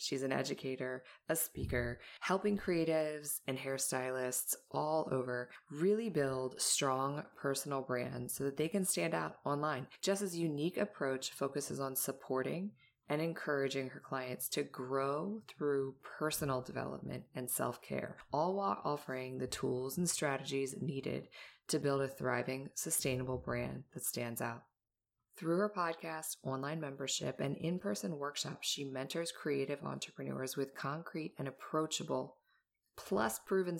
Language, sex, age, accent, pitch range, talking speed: English, female, 20-39, American, 130-165 Hz, 135 wpm